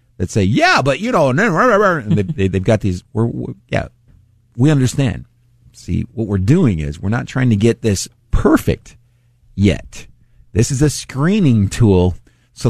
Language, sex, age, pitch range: English, male, 50-69, 95-120 Hz